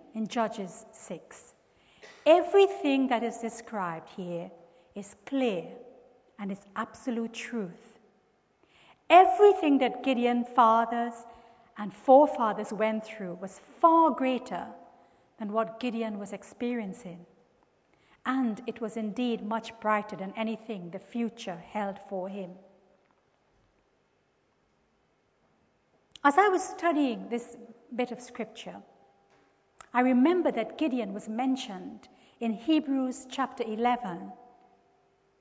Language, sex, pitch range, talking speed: English, female, 215-255 Hz, 105 wpm